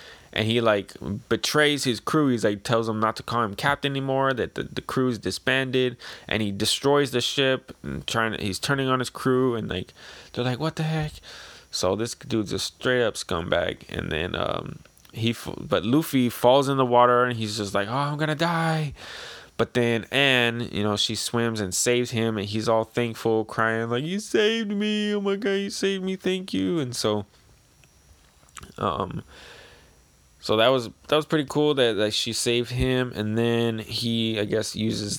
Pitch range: 105-130 Hz